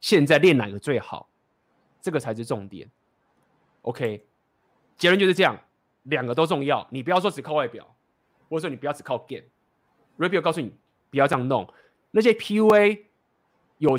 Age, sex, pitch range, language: 20-39, male, 115-175 Hz, Chinese